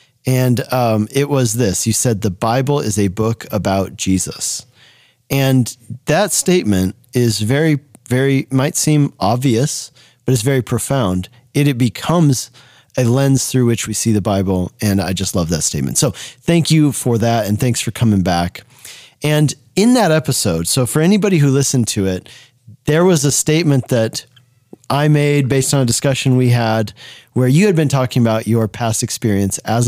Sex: male